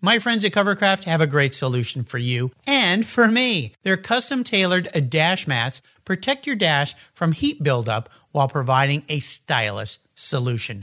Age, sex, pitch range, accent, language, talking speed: 50-69, male, 140-205 Hz, American, English, 160 wpm